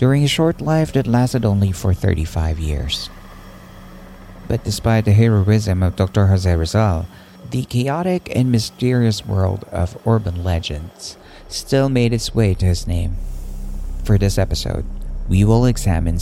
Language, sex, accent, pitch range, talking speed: Filipino, male, American, 90-120 Hz, 145 wpm